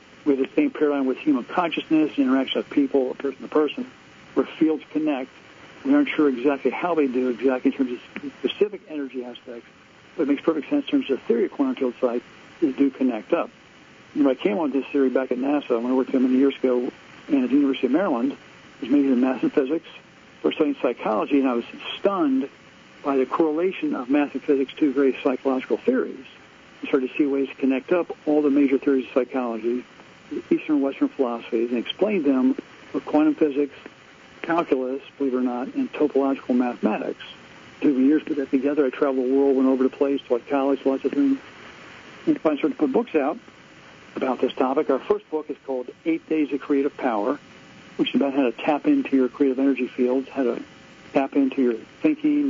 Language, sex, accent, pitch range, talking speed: English, male, American, 130-170 Hz, 210 wpm